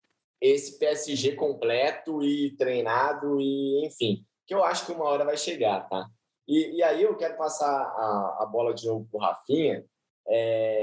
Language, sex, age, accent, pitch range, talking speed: Portuguese, male, 20-39, Brazilian, 130-205 Hz, 165 wpm